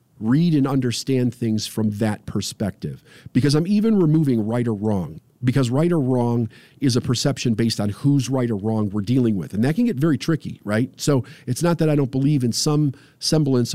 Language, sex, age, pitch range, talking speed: English, male, 50-69, 125-160 Hz, 205 wpm